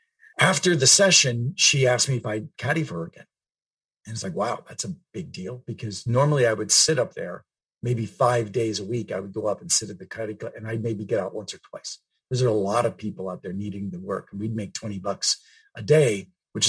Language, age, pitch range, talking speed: English, 50-69, 110-145 Hz, 245 wpm